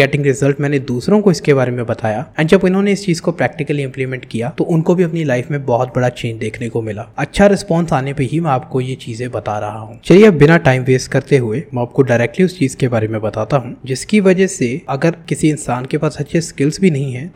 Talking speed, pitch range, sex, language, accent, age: 60 wpm, 125-165 Hz, male, Hindi, native, 20-39